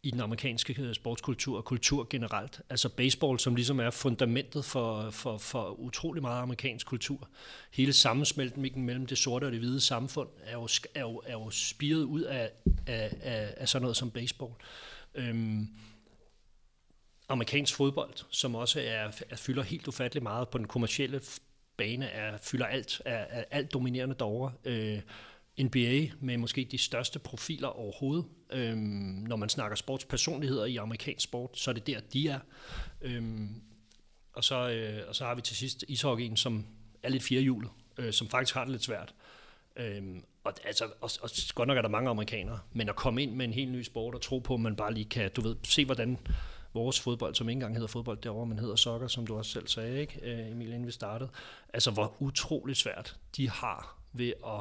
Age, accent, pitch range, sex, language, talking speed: 30-49, native, 115-135 Hz, male, Danish, 190 wpm